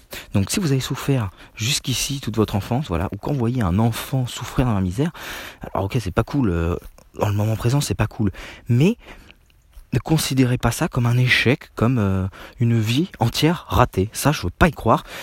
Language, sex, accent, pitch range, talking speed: French, male, French, 100-135 Hz, 210 wpm